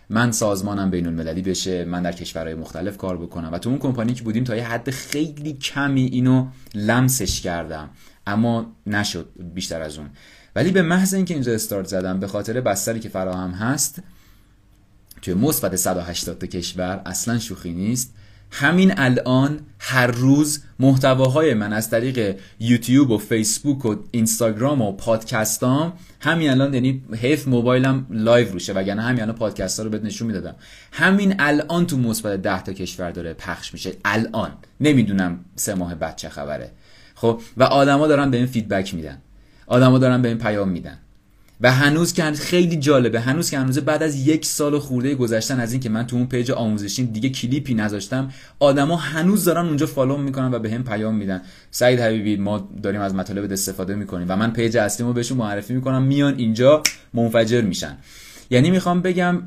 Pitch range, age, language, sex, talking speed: 95-130 Hz, 30-49, English, male, 170 wpm